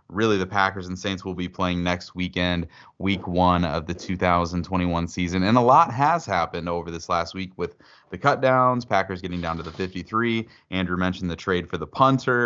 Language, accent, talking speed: English, American, 195 wpm